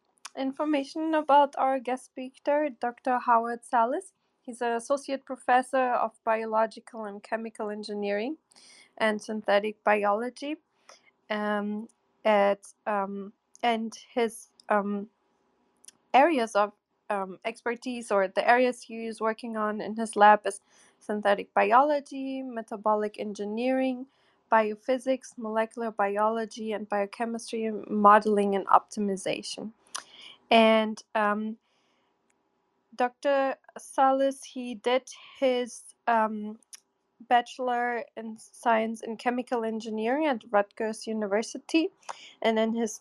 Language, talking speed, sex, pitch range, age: English, 100 wpm, female, 210-255 Hz, 20-39